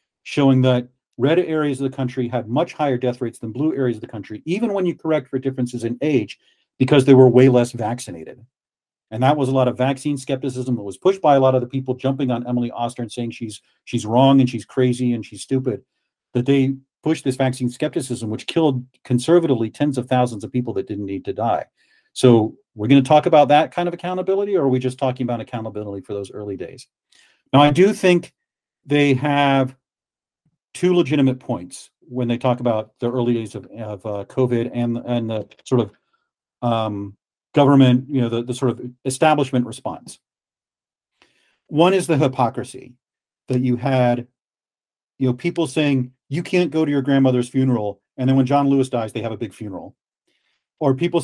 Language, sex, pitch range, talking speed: English, male, 120-145 Hz, 200 wpm